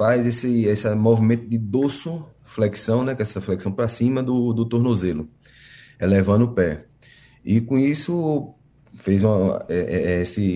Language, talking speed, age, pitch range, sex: Portuguese, 160 wpm, 20-39, 110-130 Hz, male